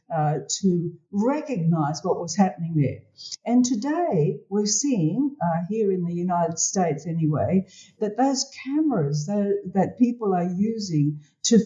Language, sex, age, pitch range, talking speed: English, female, 60-79, 170-225 Hz, 140 wpm